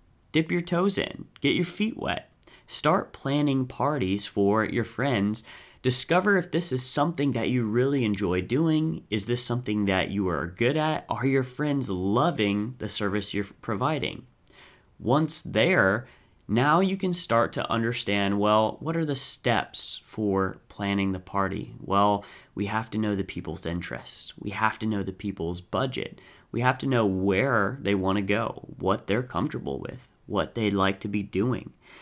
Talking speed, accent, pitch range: 170 wpm, American, 100-130 Hz